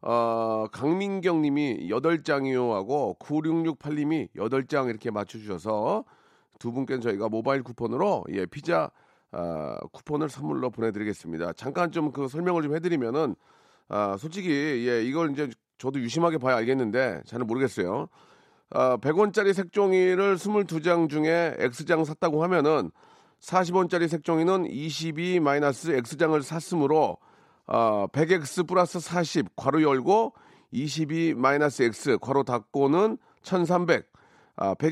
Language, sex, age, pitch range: Korean, male, 40-59, 135-175 Hz